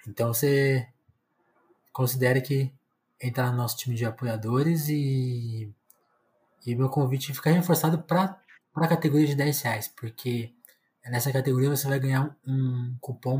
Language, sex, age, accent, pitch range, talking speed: Portuguese, male, 20-39, Brazilian, 120-145 Hz, 140 wpm